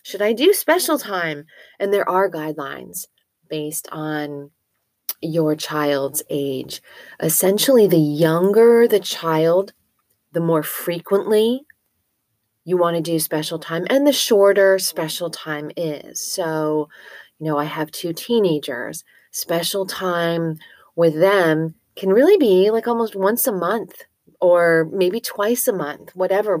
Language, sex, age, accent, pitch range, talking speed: English, female, 30-49, American, 155-200 Hz, 135 wpm